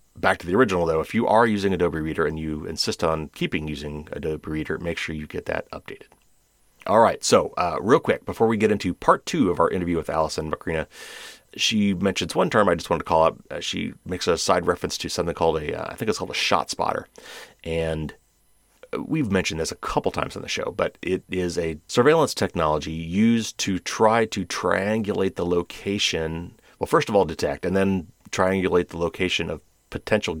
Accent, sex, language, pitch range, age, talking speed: American, male, English, 80-95 Hz, 30-49, 205 wpm